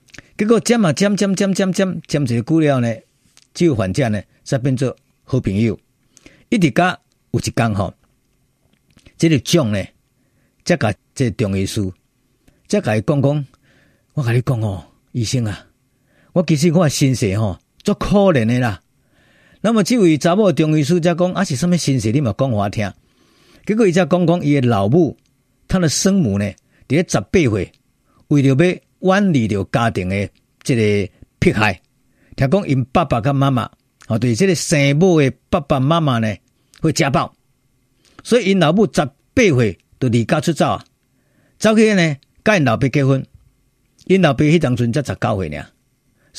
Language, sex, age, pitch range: Chinese, male, 50-69, 120-175 Hz